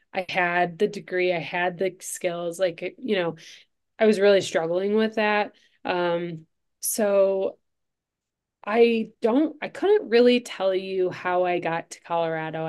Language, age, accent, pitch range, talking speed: English, 20-39, American, 170-200 Hz, 145 wpm